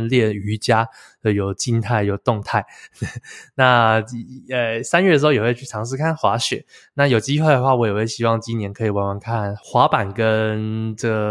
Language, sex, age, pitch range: Chinese, male, 20-39, 110-130 Hz